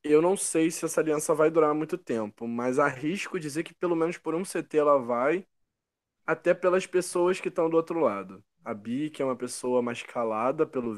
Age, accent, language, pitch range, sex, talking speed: 20-39, Brazilian, Portuguese, 125-160 Hz, male, 210 wpm